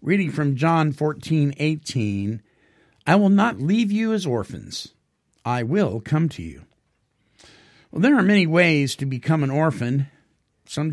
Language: English